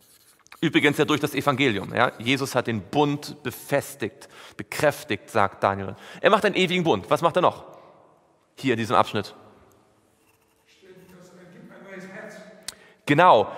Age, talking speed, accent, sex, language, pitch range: 40-59, 120 wpm, German, male, German, 130-195 Hz